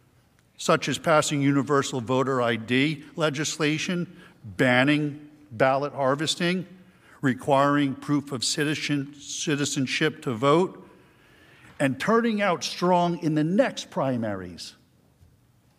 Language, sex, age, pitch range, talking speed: English, male, 60-79, 130-165 Hz, 90 wpm